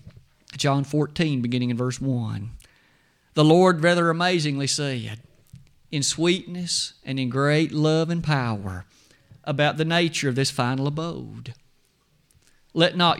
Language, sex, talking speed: English, male, 125 wpm